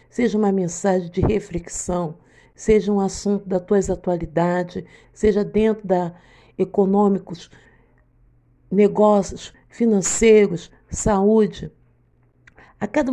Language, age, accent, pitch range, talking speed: Portuguese, 60-79, Brazilian, 180-225 Hz, 90 wpm